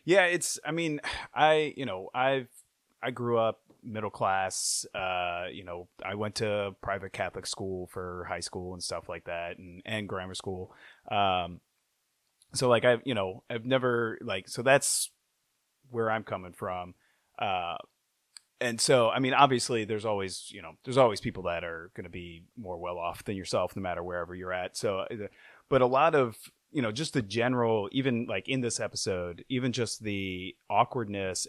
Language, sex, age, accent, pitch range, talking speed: English, male, 30-49, American, 90-120 Hz, 175 wpm